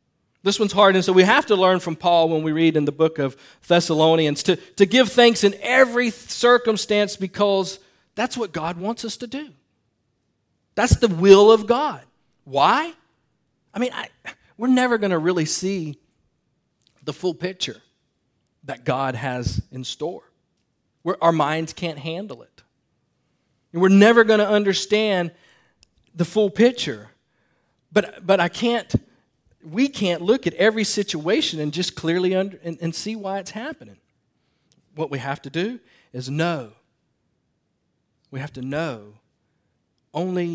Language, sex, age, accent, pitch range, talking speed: English, male, 40-59, American, 140-200 Hz, 155 wpm